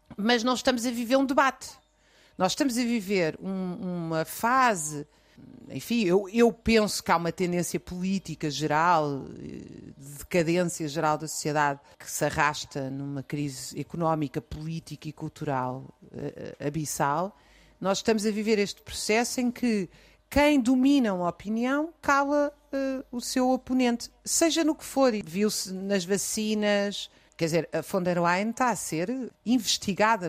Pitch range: 165-230 Hz